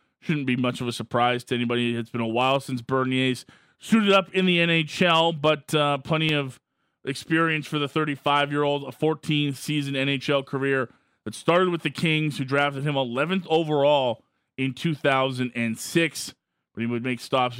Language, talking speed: English, 165 wpm